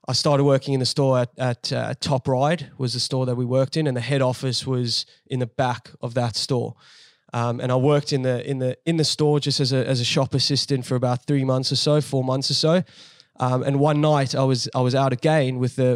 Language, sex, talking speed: English, male, 260 wpm